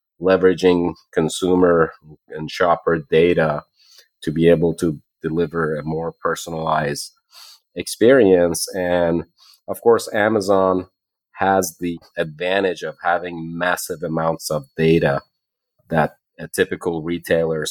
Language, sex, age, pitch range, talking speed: English, male, 30-49, 80-105 Hz, 105 wpm